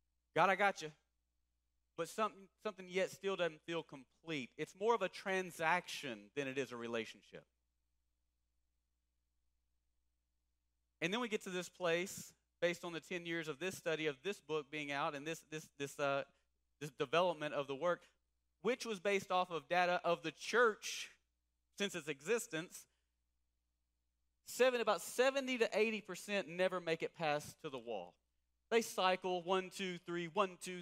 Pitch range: 125-185 Hz